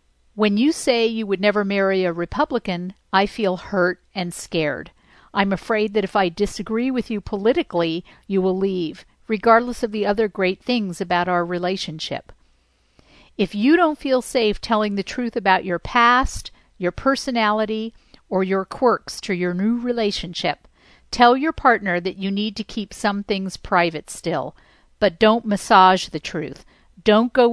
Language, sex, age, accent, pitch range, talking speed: English, female, 50-69, American, 180-230 Hz, 160 wpm